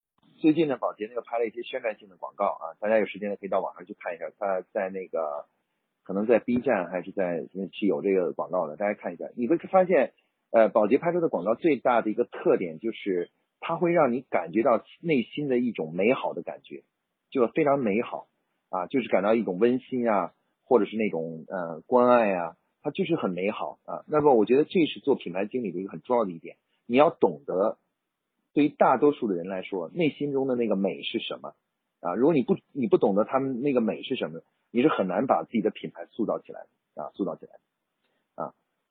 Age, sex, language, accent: 30-49, male, Chinese, native